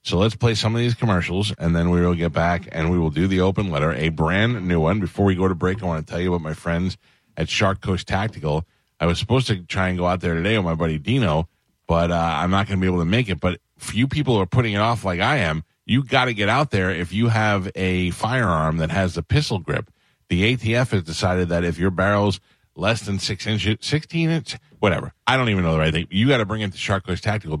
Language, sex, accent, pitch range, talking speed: English, male, American, 85-105 Hz, 265 wpm